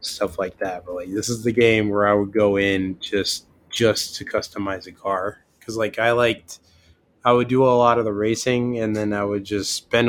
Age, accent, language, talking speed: 20-39, American, English, 225 wpm